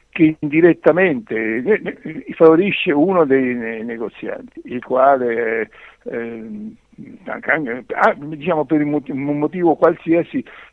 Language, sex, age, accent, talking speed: Italian, male, 60-79, native, 90 wpm